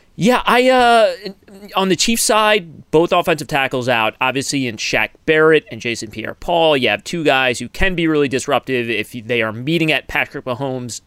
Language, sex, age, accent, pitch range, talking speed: English, male, 30-49, American, 115-150 Hz, 185 wpm